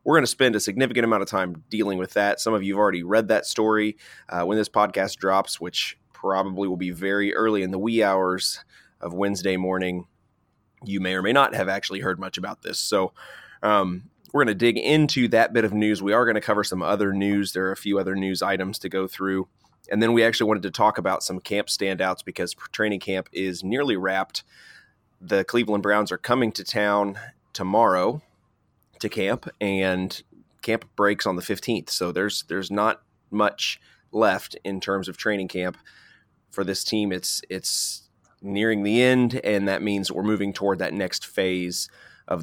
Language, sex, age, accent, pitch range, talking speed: English, male, 30-49, American, 95-110 Hz, 200 wpm